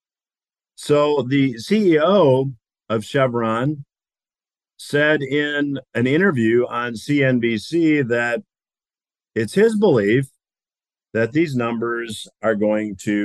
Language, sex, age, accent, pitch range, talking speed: English, male, 50-69, American, 110-145 Hz, 95 wpm